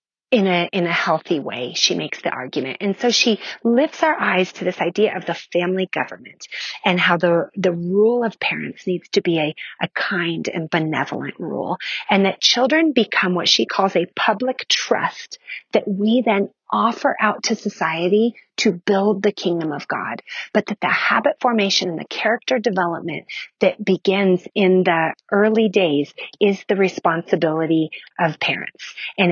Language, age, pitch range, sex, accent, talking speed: English, 30-49, 175-225 Hz, female, American, 170 wpm